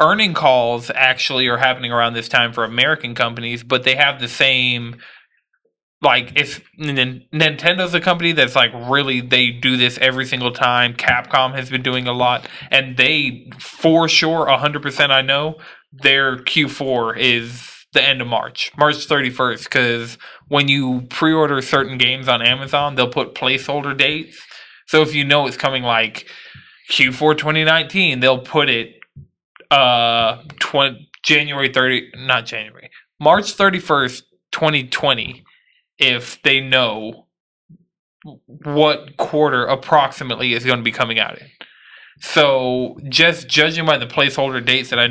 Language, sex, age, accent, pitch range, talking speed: English, male, 20-39, American, 125-150 Hz, 140 wpm